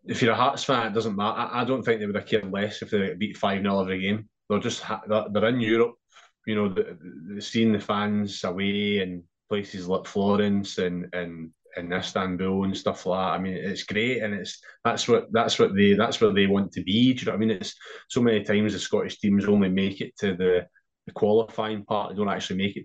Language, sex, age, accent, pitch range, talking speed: English, male, 20-39, British, 100-110 Hz, 245 wpm